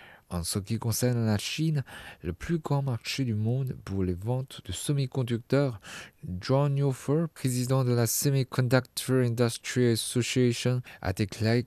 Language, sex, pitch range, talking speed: French, male, 105-135 Hz, 140 wpm